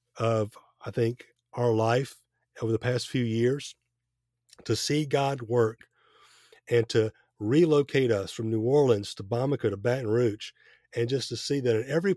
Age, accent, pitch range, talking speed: 40-59, American, 115-135 Hz, 165 wpm